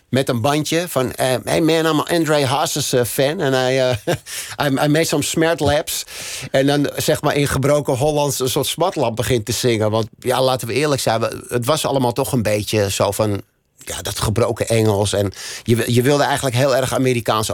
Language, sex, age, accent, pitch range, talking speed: Dutch, male, 50-69, Dutch, 105-140 Hz, 190 wpm